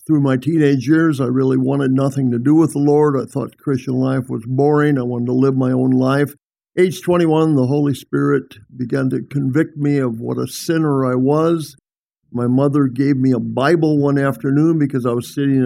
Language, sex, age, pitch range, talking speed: English, male, 50-69, 130-150 Hz, 205 wpm